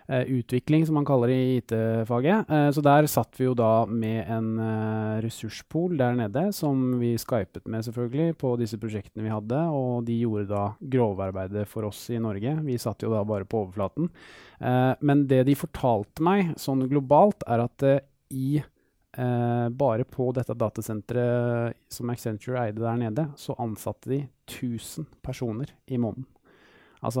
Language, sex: English, male